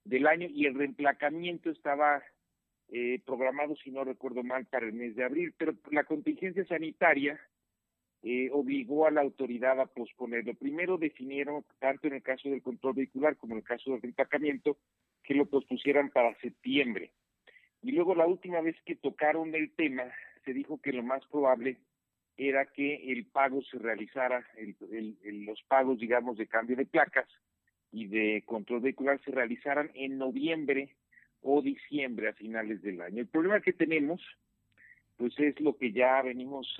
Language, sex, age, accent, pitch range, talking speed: Spanish, male, 50-69, Mexican, 120-145 Hz, 170 wpm